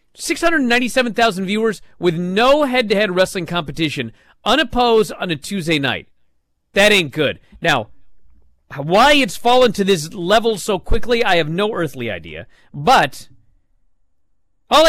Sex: male